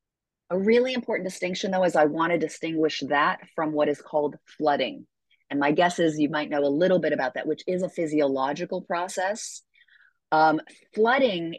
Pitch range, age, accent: 150-190 Hz, 40-59, American